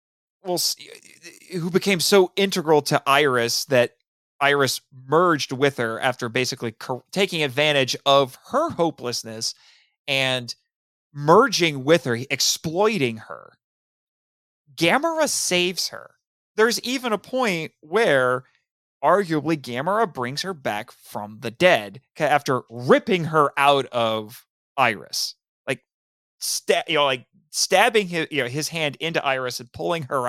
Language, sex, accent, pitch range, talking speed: English, male, American, 130-175 Hz, 125 wpm